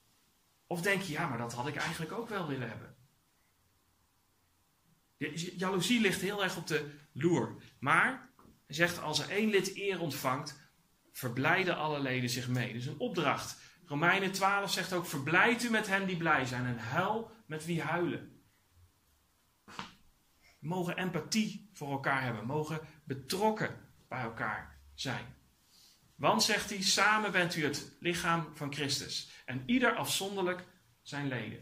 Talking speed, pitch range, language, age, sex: 155 wpm, 125-190 Hz, Dutch, 40-59, male